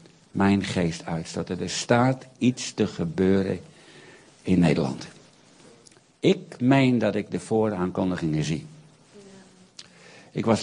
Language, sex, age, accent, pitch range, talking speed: Dutch, male, 60-79, Dutch, 95-130 Hz, 115 wpm